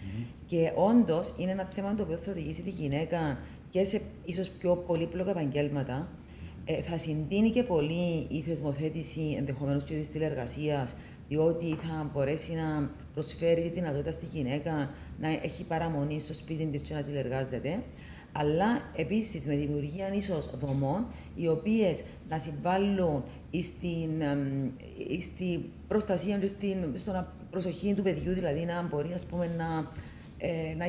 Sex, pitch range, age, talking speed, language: female, 150-185 Hz, 40-59, 130 wpm, Greek